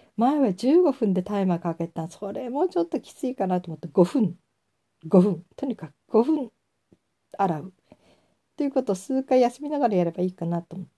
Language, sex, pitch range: Japanese, female, 170-215 Hz